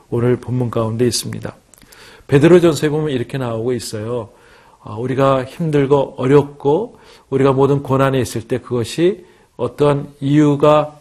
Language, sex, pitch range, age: Korean, male, 125-155 Hz, 40-59